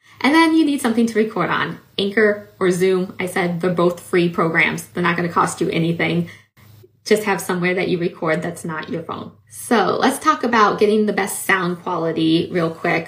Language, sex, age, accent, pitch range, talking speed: English, female, 20-39, American, 175-230 Hz, 200 wpm